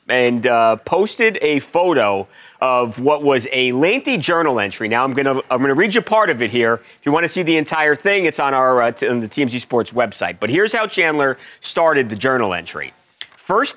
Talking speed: 225 wpm